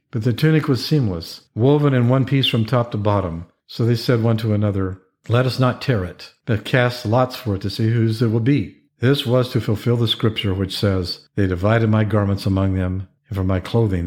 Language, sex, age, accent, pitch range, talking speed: English, male, 50-69, American, 100-125 Hz, 225 wpm